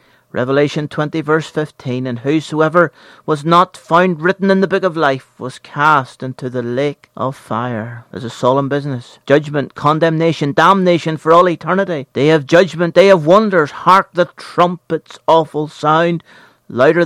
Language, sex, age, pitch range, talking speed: English, male, 40-59, 140-175 Hz, 155 wpm